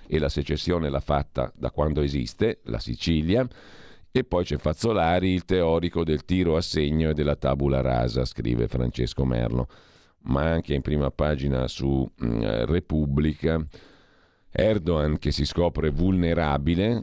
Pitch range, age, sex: 70-85 Hz, 50-69, male